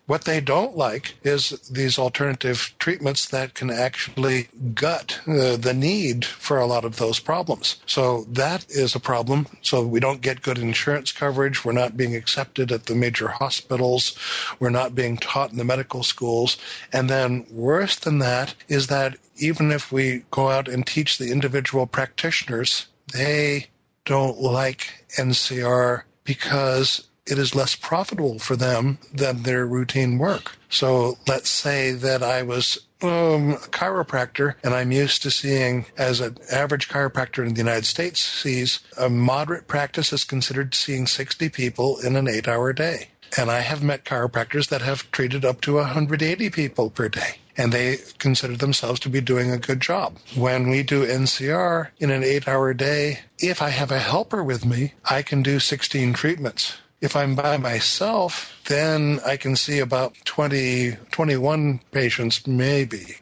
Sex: male